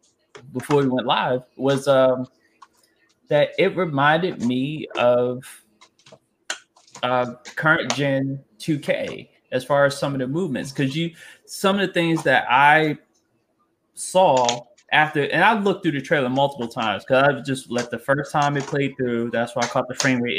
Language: English